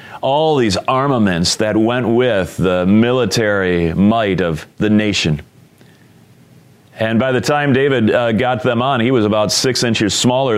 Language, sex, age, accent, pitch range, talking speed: English, male, 40-59, American, 95-125 Hz, 155 wpm